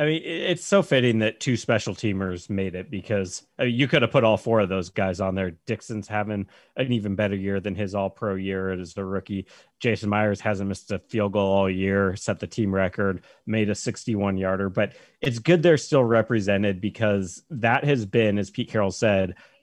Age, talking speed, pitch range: 30-49, 200 wpm, 95-115 Hz